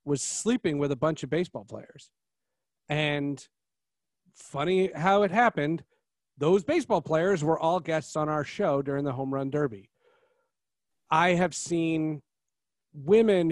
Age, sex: 40-59, male